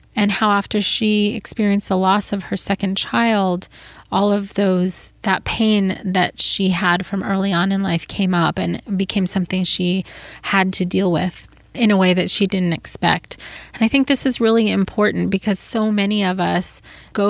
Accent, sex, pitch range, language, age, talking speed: American, female, 190-220 Hz, English, 30-49, 185 wpm